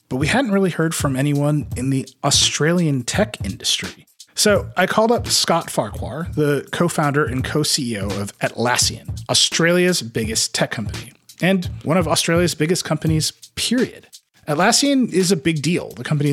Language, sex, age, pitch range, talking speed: English, male, 30-49, 115-160 Hz, 155 wpm